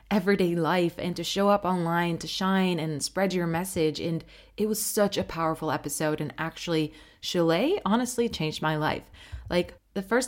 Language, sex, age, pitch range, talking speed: English, female, 20-39, 155-205 Hz, 175 wpm